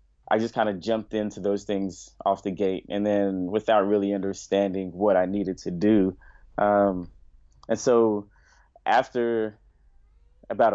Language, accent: English, American